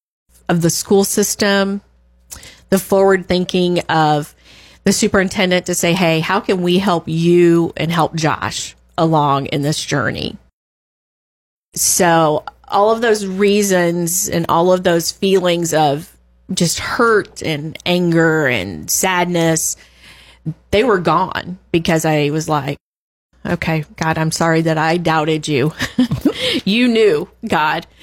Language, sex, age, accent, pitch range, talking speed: English, female, 30-49, American, 150-185 Hz, 130 wpm